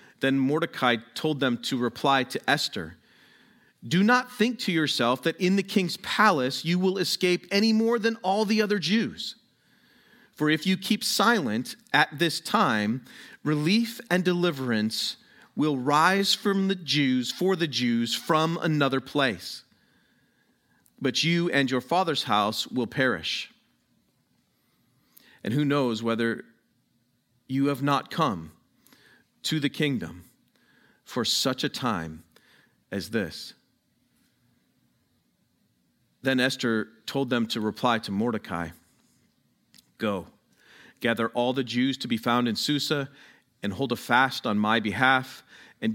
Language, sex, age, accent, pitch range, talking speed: English, male, 40-59, American, 120-175 Hz, 130 wpm